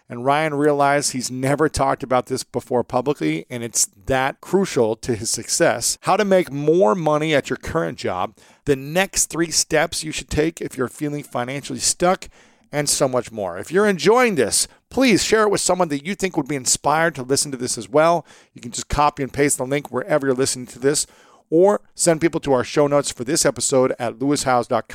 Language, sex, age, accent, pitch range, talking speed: English, male, 40-59, American, 125-160 Hz, 210 wpm